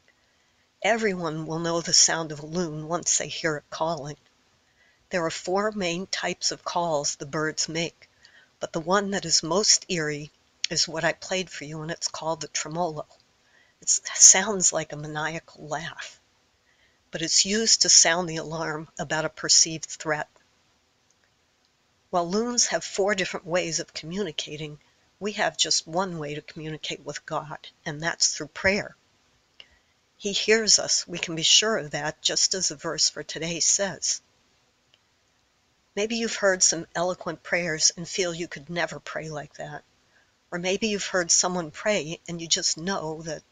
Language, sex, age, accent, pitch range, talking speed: English, female, 50-69, American, 155-190 Hz, 165 wpm